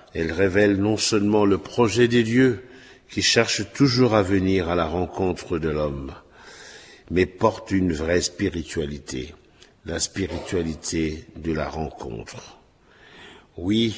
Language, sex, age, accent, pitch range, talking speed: French, male, 50-69, French, 85-115 Hz, 125 wpm